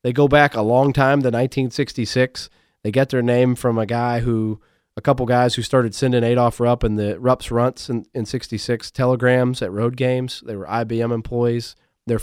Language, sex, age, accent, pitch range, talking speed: English, male, 30-49, American, 115-140 Hz, 195 wpm